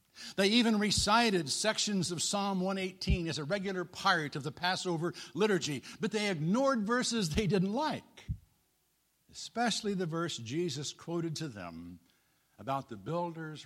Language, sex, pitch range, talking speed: English, male, 140-220 Hz, 140 wpm